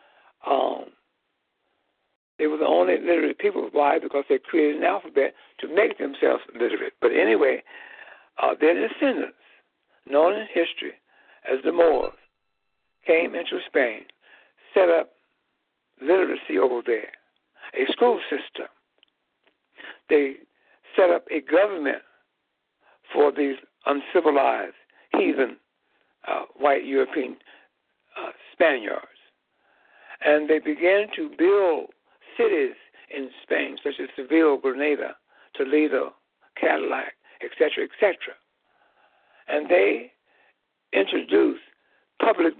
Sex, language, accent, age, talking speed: male, English, American, 60-79, 100 wpm